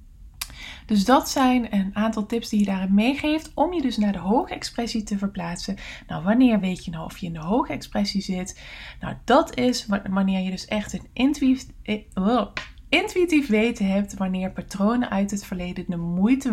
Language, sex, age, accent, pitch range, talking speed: English, female, 20-39, Dutch, 185-235 Hz, 180 wpm